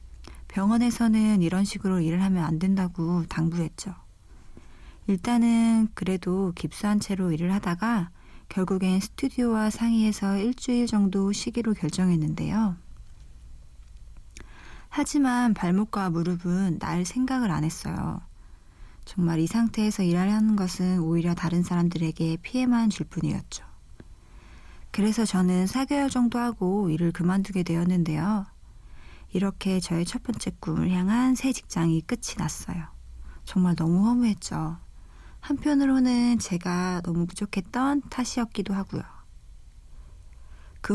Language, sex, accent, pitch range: Korean, female, native, 165-215 Hz